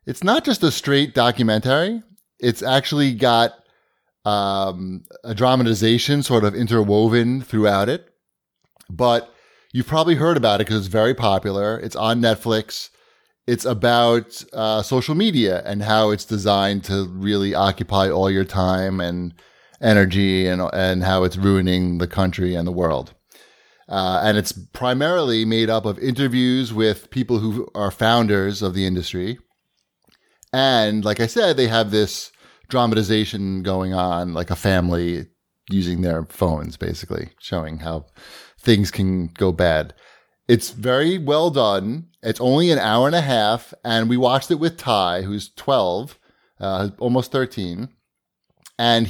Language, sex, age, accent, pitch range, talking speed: English, male, 30-49, American, 95-130 Hz, 145 wpm